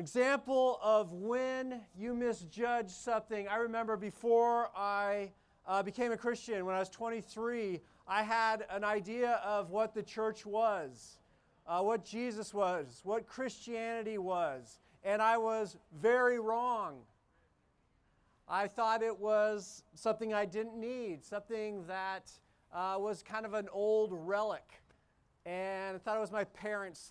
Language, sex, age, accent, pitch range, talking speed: English, male, 40-59, American, 200-235 Hz, 140 wpm